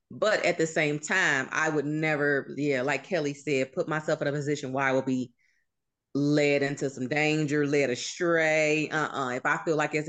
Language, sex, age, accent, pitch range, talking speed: English, female, 30-49, American, 145-180 Hz, 200 wpm